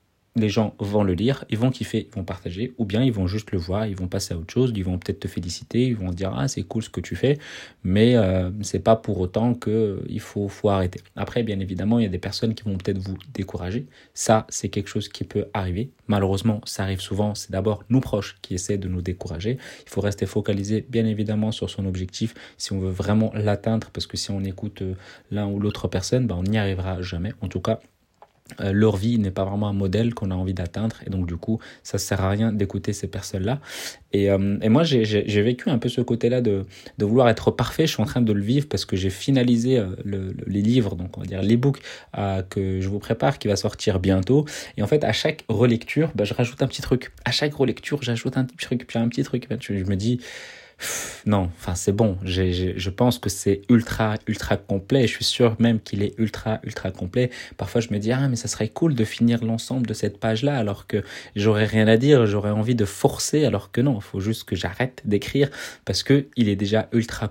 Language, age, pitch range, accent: French, 30-49, 100-120 Hz, French